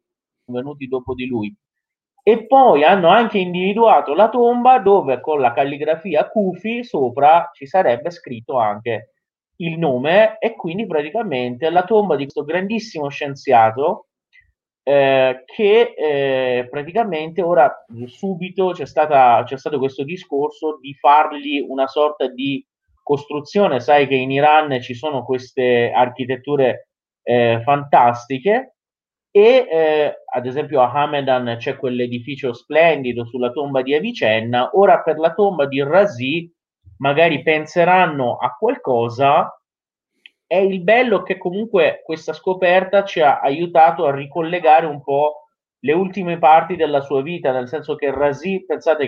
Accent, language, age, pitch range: native, Italian, 30-49, 130-185 Hz